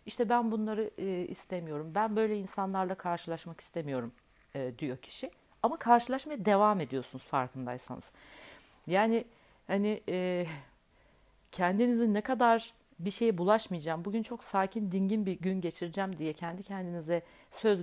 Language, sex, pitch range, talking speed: Turkish, female, 150-215 Hz, 130 wpm